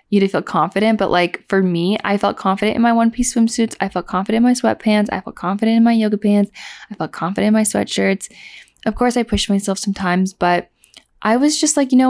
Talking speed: 235 wpm